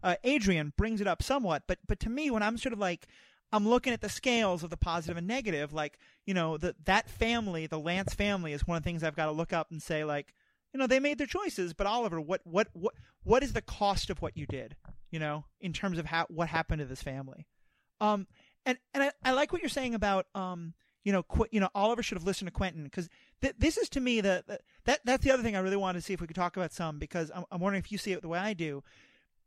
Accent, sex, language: American, male, English